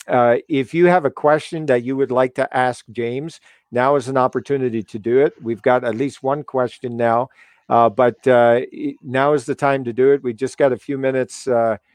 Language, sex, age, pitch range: English, male, 50-69, 120-155 Hz